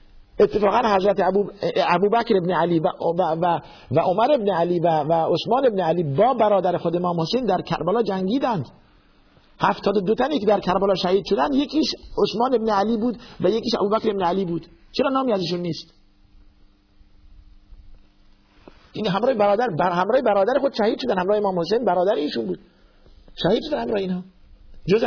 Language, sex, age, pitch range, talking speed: Persian, male, 50-69, 155-205 Hz, 160 wpm